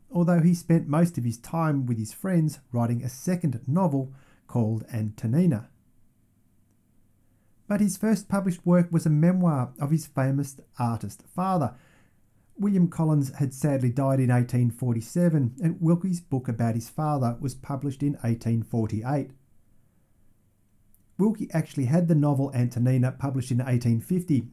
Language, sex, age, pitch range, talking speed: English, male, 40-59, 110-165 Hz, 135 wpm